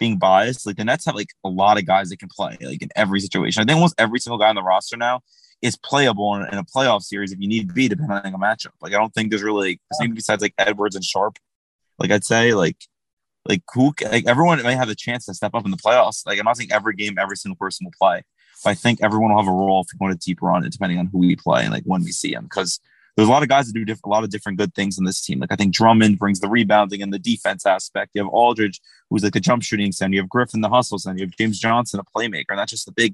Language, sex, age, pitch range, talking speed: English, male, 20-39, 100-125 Hz, 300 wpm